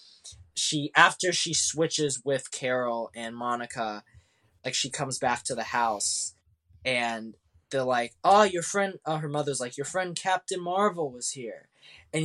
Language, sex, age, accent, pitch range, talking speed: English, male, 20-39, American, 135-195 Hz, 155 wpm